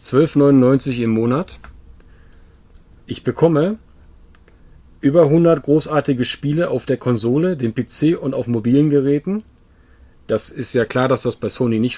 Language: German